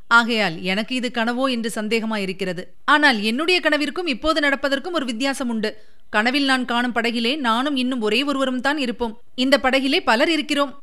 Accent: native